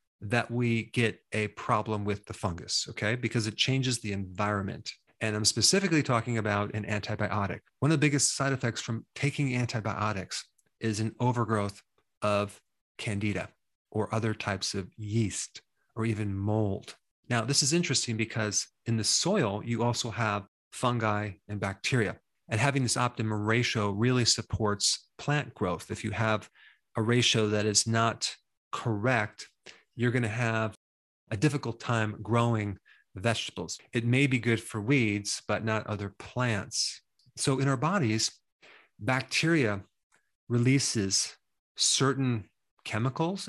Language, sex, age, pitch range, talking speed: English, male, 30-49, 105-125 Hz, 140 wpm